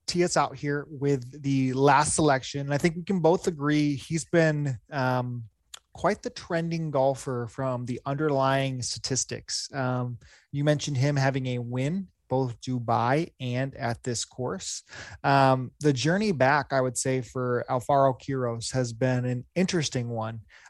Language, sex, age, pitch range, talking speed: English, male, 20-39, 125-145 Hz, 155 wpm